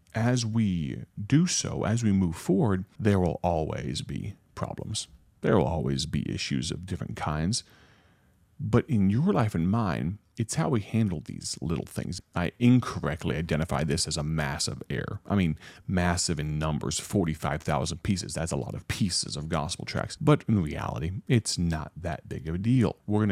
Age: 40-59